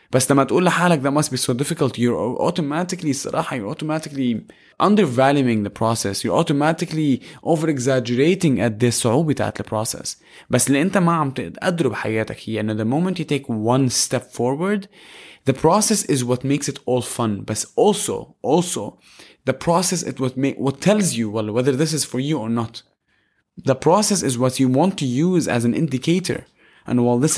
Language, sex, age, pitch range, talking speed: English, male, 20-39, 120-160 Hz, 155 wpm